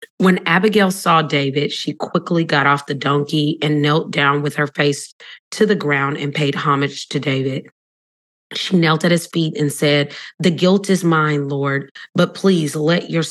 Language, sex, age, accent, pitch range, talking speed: English, female, 30-49, American, 145-175 Hz, 180 wpm